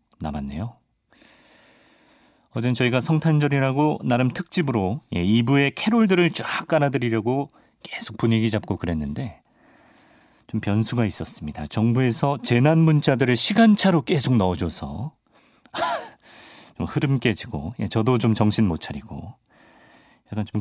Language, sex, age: Korean, male, 40-59